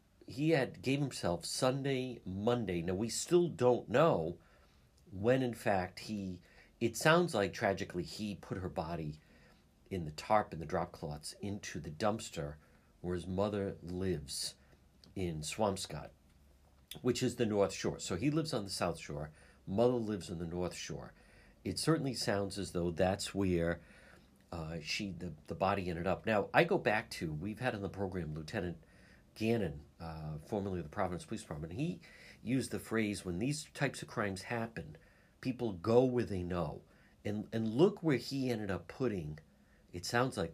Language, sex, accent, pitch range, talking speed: English, male, American, 85-120 Hz, 170 wpm